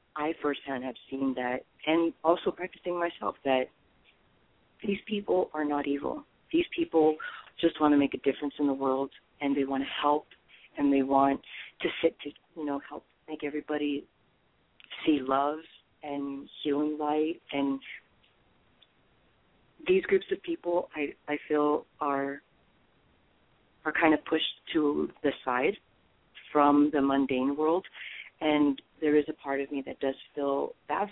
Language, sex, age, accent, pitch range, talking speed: English, female, 40-59, American, 140-165 Hz, 150 wpm